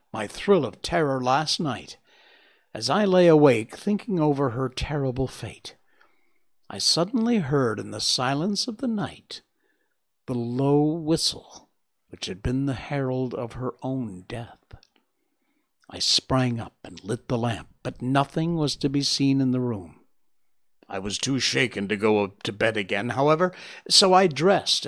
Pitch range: 125-170 Hz